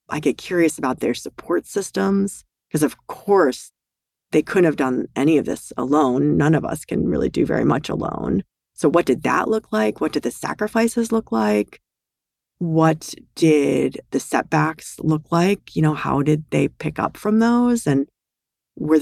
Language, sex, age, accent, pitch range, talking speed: English, female, 30-49, American, 140-170 Hz, 175 wpm